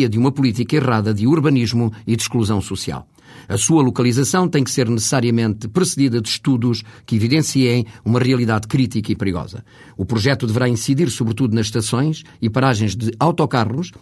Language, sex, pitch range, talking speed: Portuguese, male, 115-140 Hz, 165 wpm